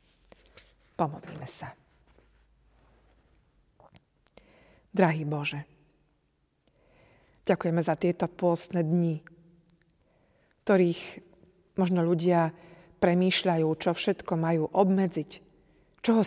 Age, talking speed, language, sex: 40-59, 65 wpm, Slovak, female